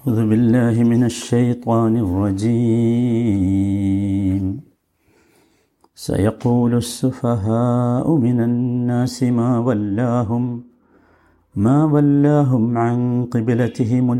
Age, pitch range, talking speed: 50-69, 100-125 Hz, 65 wpm